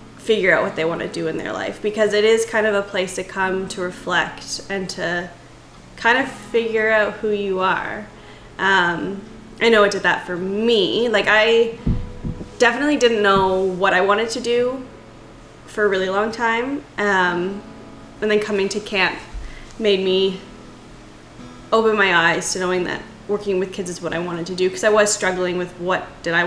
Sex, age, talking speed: female, 10-29, 190 wpm